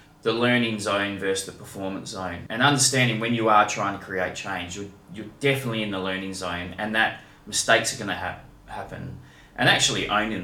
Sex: male